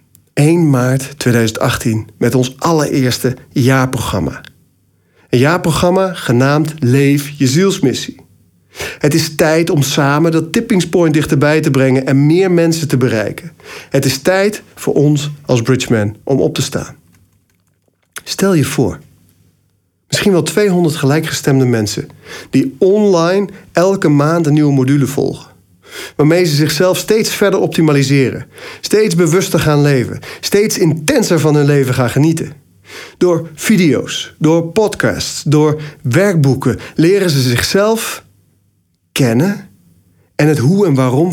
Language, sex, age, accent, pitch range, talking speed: Dutch, male, 40-59, Dutch, 130-175 Hz, 130 wpm